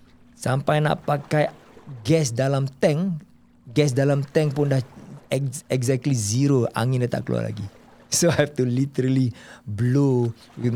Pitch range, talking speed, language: 115-140 Hz, 140 wpm, Malay